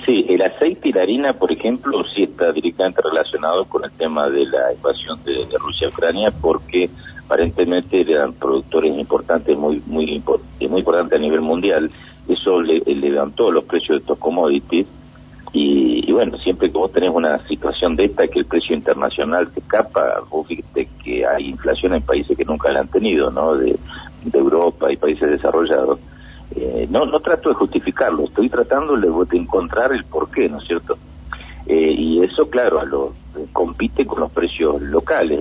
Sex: male